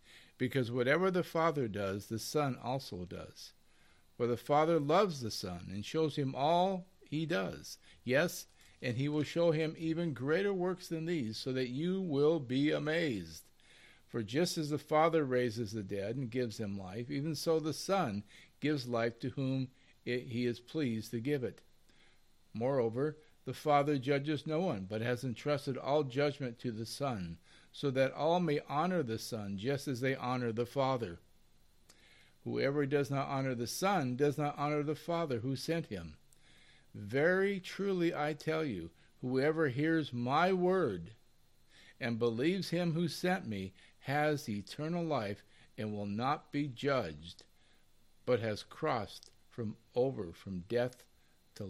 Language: English